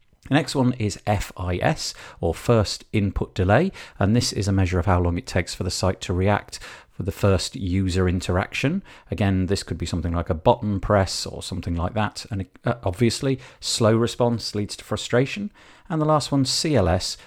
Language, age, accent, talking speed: English, 40-59, British, 190 wpm